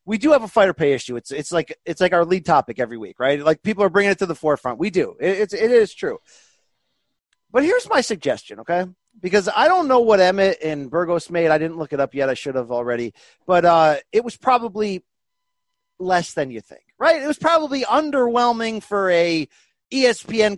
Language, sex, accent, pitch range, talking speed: English, male, American, 170-260 Hz, 215 wpm